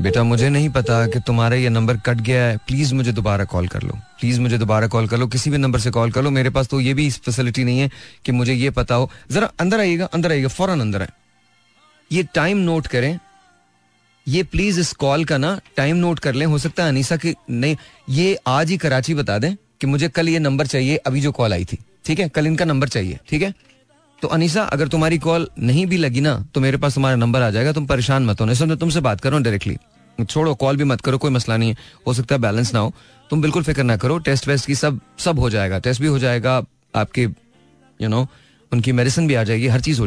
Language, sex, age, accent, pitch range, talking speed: Hindi, male, 30-49, native, 120-155 Hz, 245 wpm